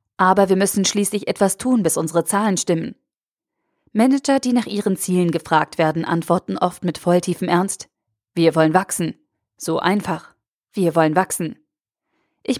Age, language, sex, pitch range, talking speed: 20-39, German, female, 165-195 Hz, 150 wpm